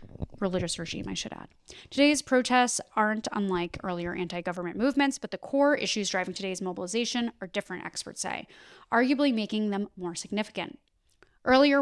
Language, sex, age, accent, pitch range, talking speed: English, female, 10-29, American, 190-245 Hz, 145 wpm